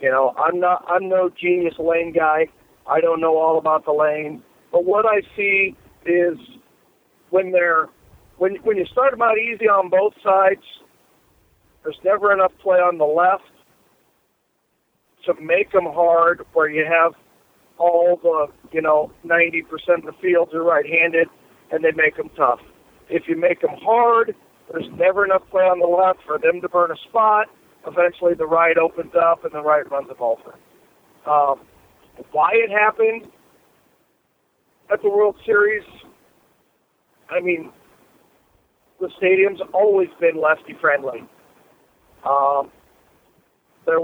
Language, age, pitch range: English, 50-69, 165-205 Hz